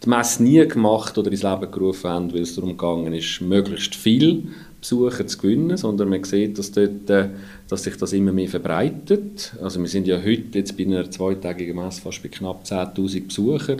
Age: 40-59